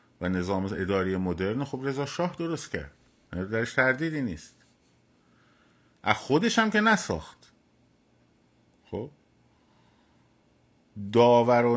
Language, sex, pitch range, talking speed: Persian, male, 100-130 Hz, 95 wpm